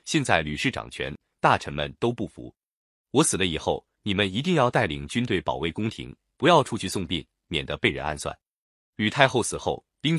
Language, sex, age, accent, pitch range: Chinese, male, 30-49, native, 85-135 Hz